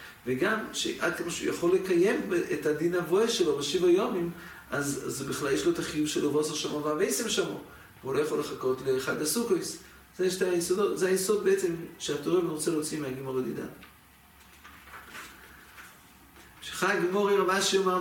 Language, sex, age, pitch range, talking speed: English, male, 40-59, 160-220 Hz, 145 wpm